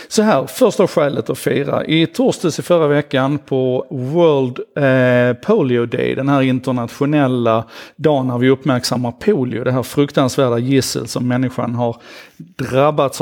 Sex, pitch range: male, 125-150 Hz